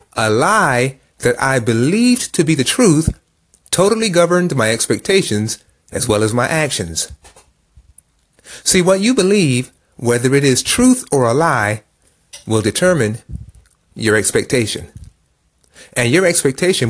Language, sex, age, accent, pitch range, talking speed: English, male, 30-49, American, 115-185 Hz, 130 wpm